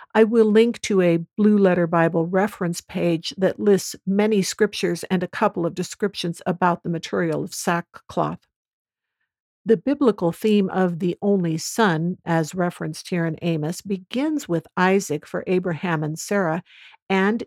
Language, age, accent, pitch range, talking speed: English, 60-79, American, 170-200 Hz, 150 wpm